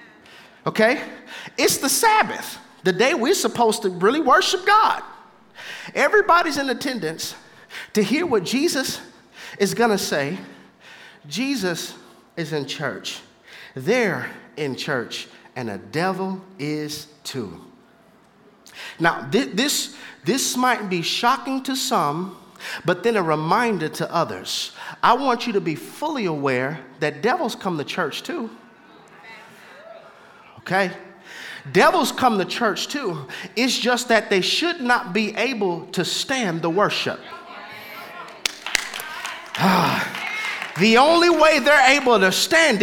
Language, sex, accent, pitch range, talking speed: English, male, American, 185-270 Hz, 125 wpm